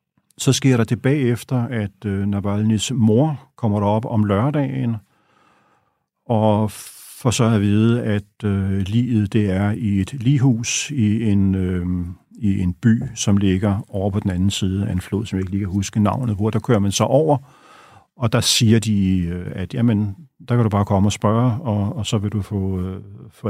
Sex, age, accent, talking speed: male, 50-69, native, 190 wpm